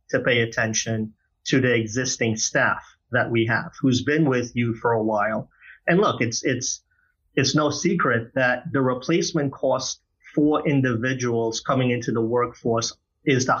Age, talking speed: 30-49, 160 wpm